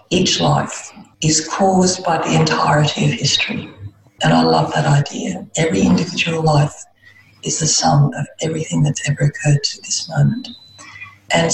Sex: female